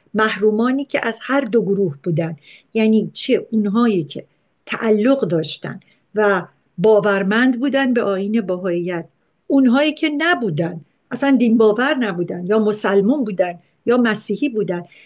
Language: Persian